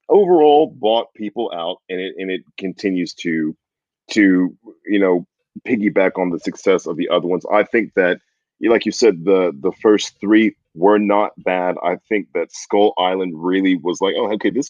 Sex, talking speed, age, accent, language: male, 185 wpm, 30-49, American, English